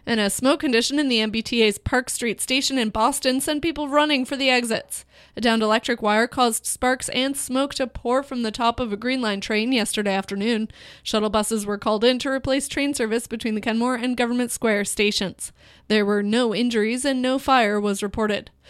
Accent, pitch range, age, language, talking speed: American, 215-255 Hz, 20-39, English, 200 wpm